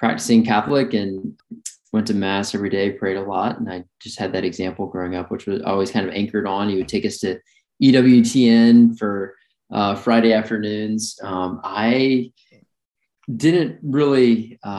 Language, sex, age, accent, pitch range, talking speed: English, male, 20-39, American, 95-110 Hz, 160 wpm